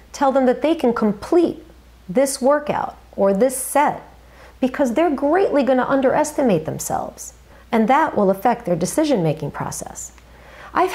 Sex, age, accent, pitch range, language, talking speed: female, 40-59, American, 200-275 Hz, English, 145 wpm